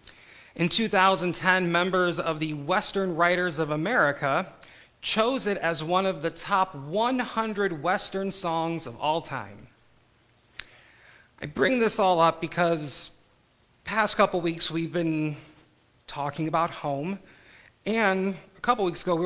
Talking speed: 135 wpm